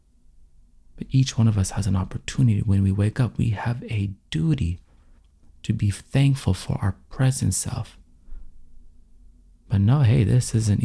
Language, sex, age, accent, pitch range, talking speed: English, male, 30-49, American, 85-120 Hz, 155 wpm